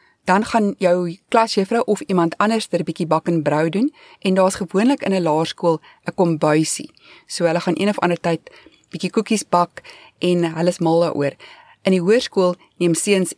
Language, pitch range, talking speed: English, 165-200 Hz, 190 wpm